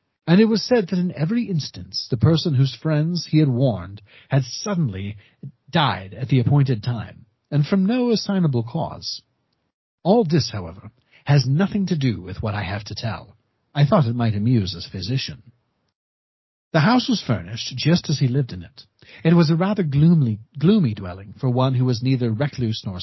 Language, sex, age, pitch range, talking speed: English, male, 40-59, 110-160 Hz, 185 wpm